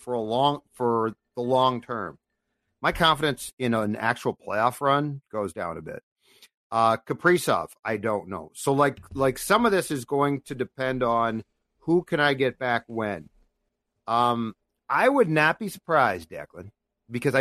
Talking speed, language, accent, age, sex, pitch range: 165 wpm, English, American, 50-69, male, 110-140 Hz